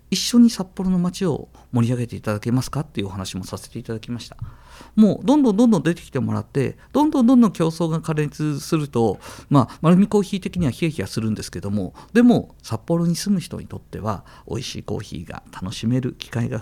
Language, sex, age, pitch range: Japanese, male, 50-69, 105-170 Hz